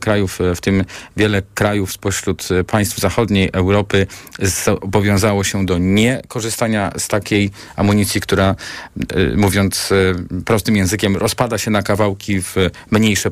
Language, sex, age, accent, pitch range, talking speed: Polish, male, 40-59, native, 100-120 Hz, 115 wpm